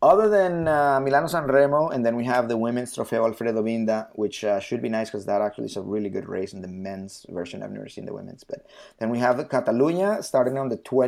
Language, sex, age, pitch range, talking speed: English, male, 30-49, 95-125 Hz, 245 wpm